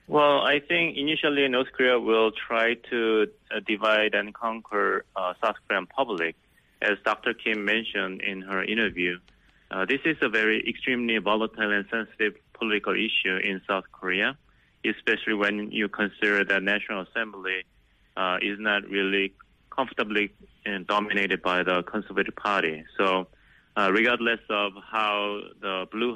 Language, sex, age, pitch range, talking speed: English, male, 20-39, 90-110 Hz, 145 wpm